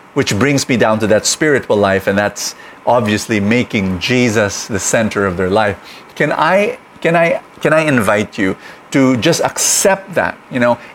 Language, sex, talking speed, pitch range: English, male, 175 wpm, 125-200 Hz